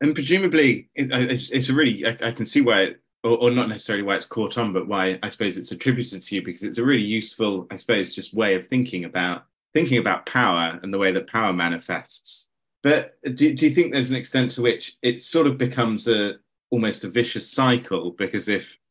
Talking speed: 215 wpm